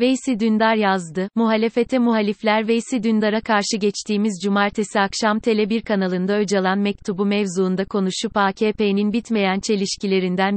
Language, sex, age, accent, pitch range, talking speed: Turkish, female, 30-49, native, 195-220 Hz, 115 wpm